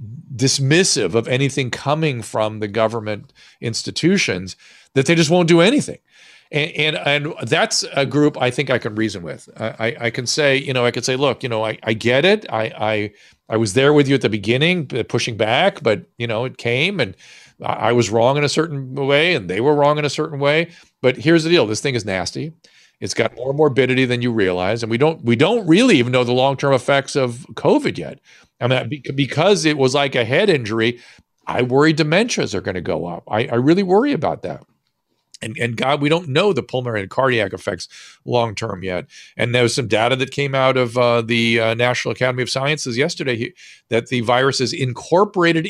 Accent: American